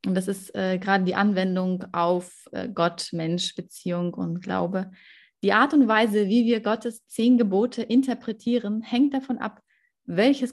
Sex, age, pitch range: female, 30-49, 185-230 Hz